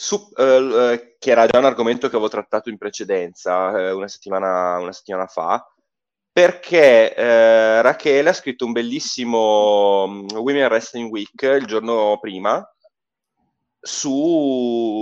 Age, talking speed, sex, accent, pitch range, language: 20-39, 130 wpm, male, native, 100-140 Hz, Italian